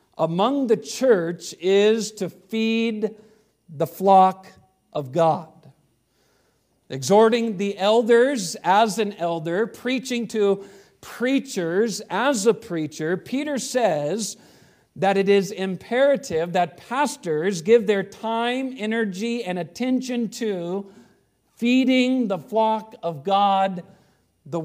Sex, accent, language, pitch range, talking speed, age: male, American, English, 180-230 Hz, 105 wpm, 50-69